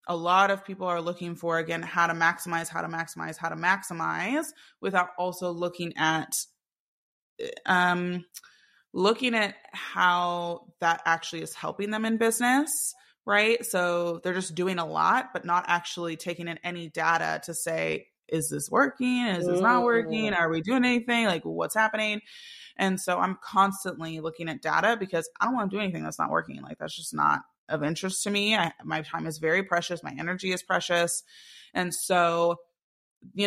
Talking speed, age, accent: 180 wpm, 20-39, American